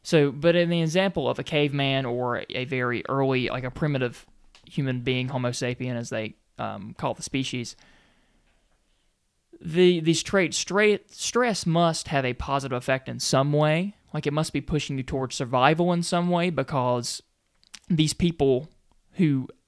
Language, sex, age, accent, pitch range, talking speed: English, male, 20-39, American, 130-160 Hz, 160 wpm